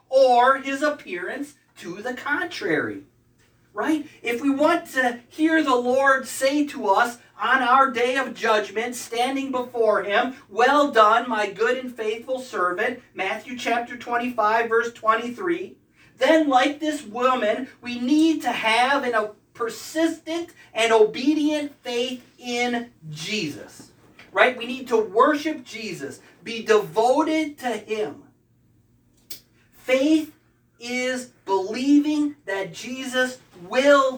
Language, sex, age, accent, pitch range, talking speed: English, male, 40-59, American, 240-305 Hz, 120 wpm